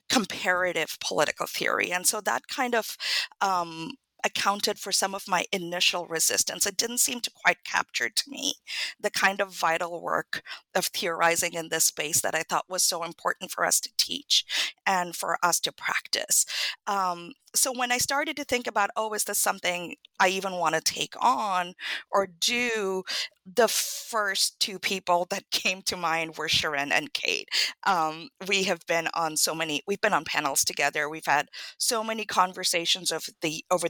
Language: English